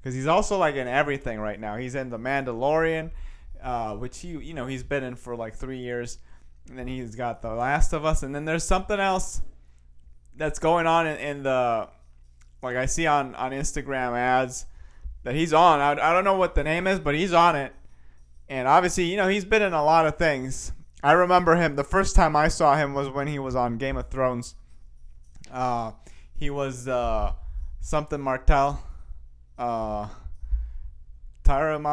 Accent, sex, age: American, male, 30-49